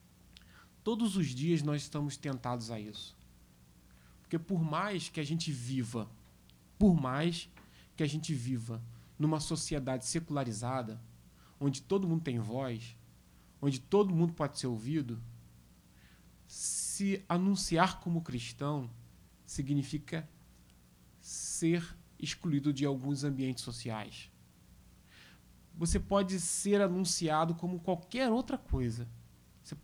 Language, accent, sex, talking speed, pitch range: Portuguese, Brazilian, male, 110 wpm, 115-165 Hz